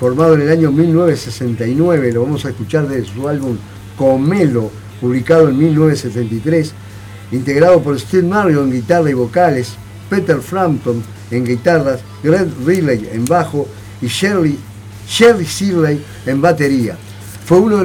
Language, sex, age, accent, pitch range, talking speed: Spanish, male, 50-69, Argentinian, 120-165 Hz, 135 wpm